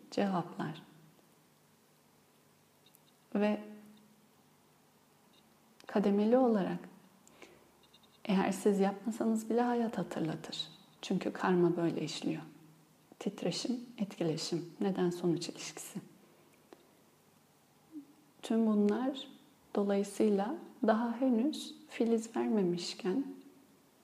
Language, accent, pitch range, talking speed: Turkish, native, 180-245 Hz, 65 wpm